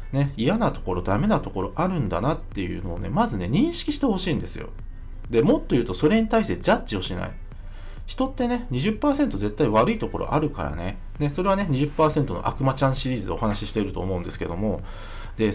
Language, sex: Japanese, male